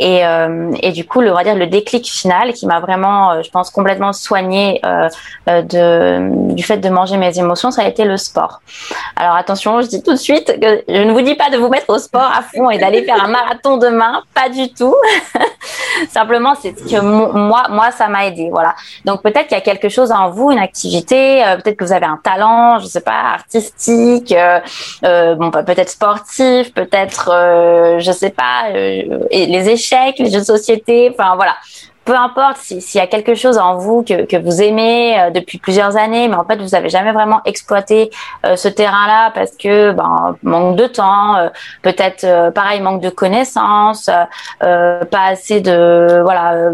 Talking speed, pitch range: 205 wpm, 180-235 Hz